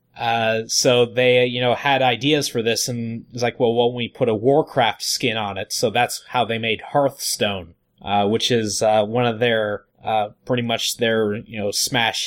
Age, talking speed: 20-39, 200 wpm